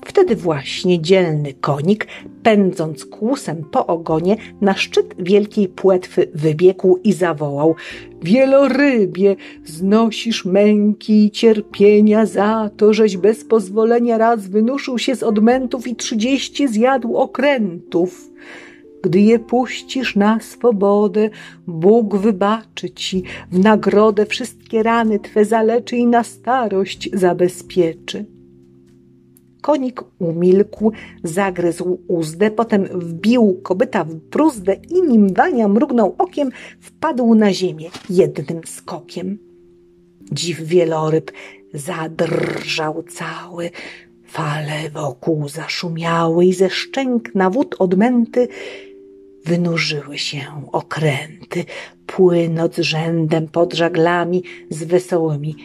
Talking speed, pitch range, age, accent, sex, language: 100 wpm, 165-220 Hz, 50-69, native, female, Polish